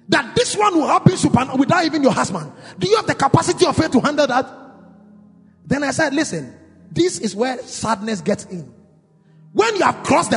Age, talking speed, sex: 30-49, 205 wpm, male